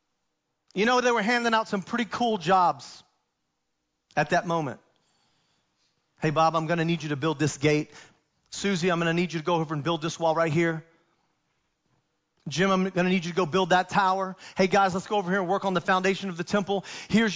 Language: English